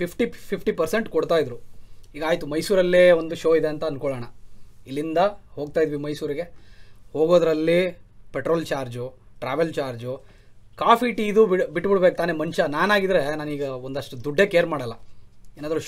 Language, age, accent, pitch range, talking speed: Kannada, 30-49, native, 120-180 Hz, 130 wpm